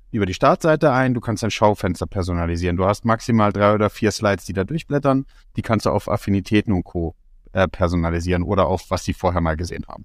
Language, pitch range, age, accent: German, 90-115 Hz, 30-49, German